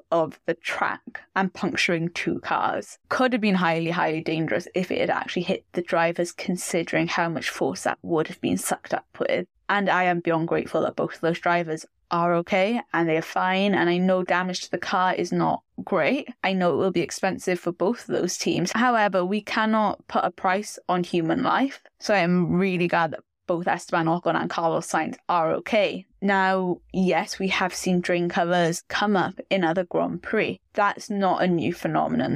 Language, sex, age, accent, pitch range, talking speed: English, female, 10-29, British, 175-210 Hz, 200 wpm